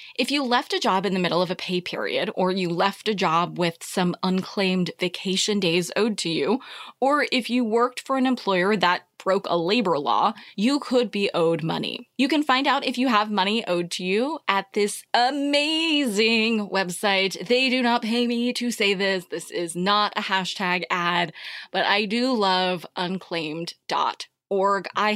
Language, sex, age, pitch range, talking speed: English, female, 20-39, 180-235 Hz, 185 wpm